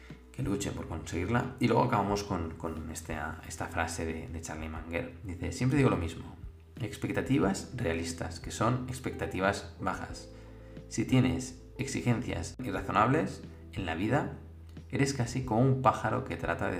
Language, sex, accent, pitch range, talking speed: Spanish, male, Spanish, 85-115 Hz, 145 wpm